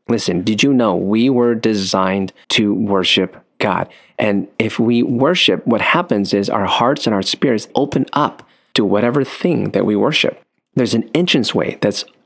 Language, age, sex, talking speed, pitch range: English, 40-59, male, 165 wpm, 100-125 Hz